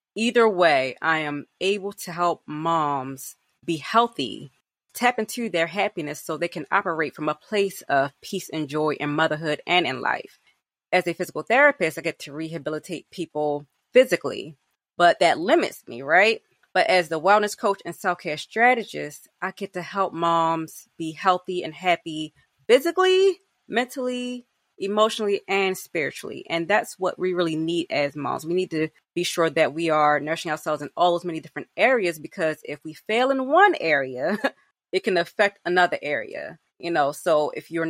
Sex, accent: female, American